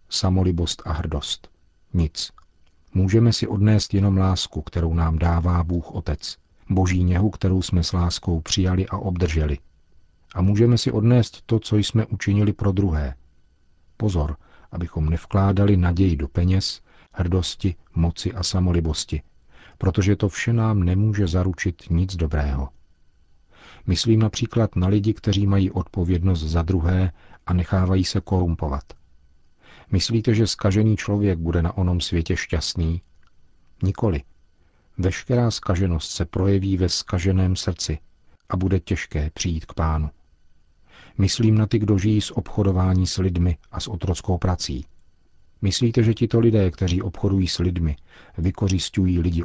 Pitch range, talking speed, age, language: 80-100 Hz, 135 wpm, 40-59, Czech